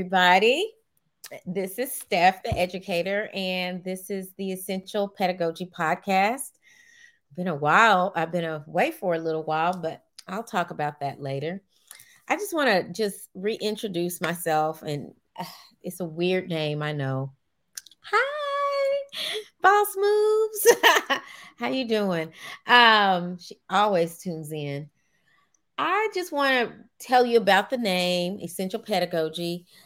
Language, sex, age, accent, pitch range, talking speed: English, female, 30-49, American, 155-205 Hz, 135 wpm